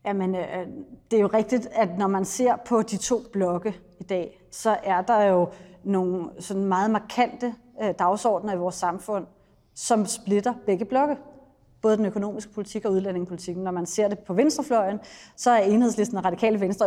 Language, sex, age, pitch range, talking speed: Danish, female, 30-49, 195-235 Hz, 175 wpm